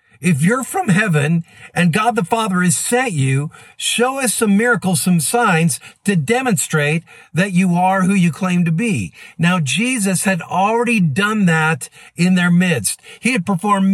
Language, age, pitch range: English, 50-69, 155-200 Hz